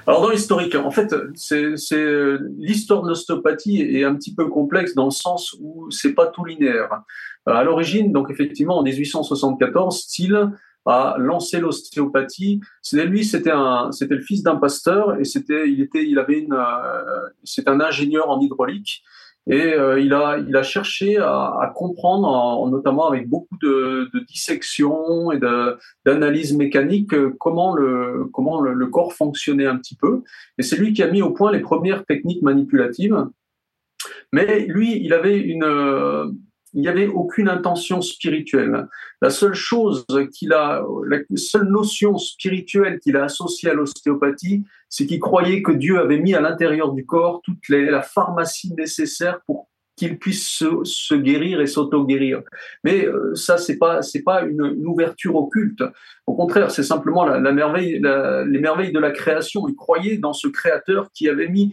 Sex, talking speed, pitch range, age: male, 175 wpm, 140-195 Hz, 40-59